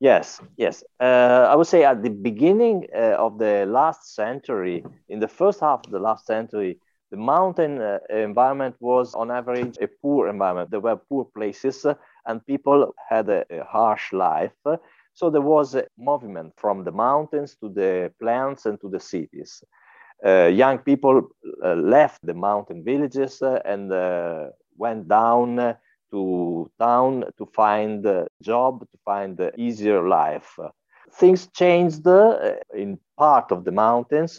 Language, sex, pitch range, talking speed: Hebrew, male, 110-145 Hz, 165 wpm